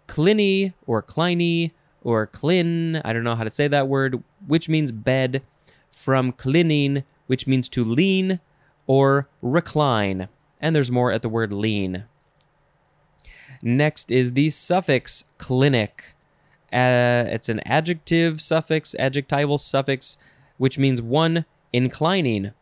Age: 20-39